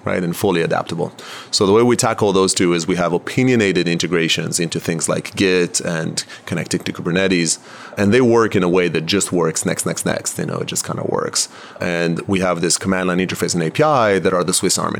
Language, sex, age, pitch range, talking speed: English, male, 30-49, 85-105 Hz, 230 wpm